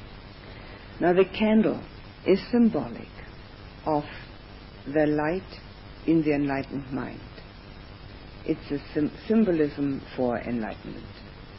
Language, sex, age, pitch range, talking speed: English, female, 60-79, 105-160 Hz, 95 wpm